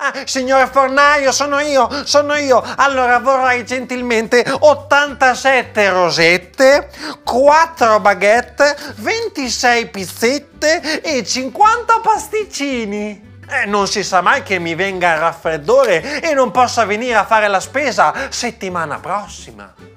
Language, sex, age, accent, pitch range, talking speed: Italian, male, 30-49, native, 195-295 Hz, 115 wpm